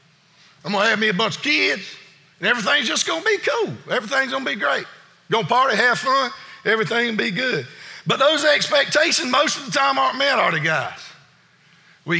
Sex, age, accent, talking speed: male, 50-69, American, 190 wpm